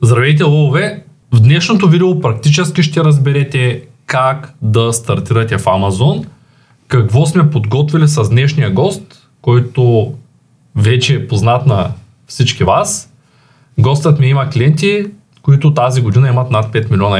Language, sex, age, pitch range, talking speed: Bulgarian, male, 20-39, 115-150 Hz, 130 wpm